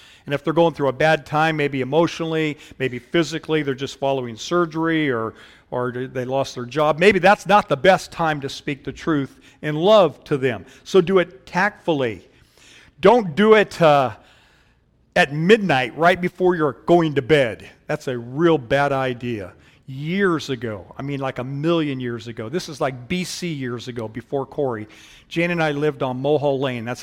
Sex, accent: male, American